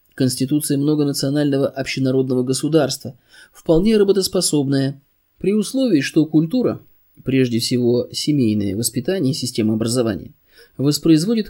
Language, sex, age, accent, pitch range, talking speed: Russian, male, 20-39, native, 115-150 Hz, 95 wpm